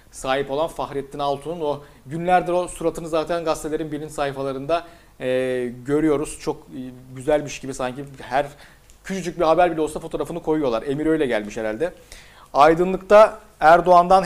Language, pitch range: Turkish, 130-165 Hz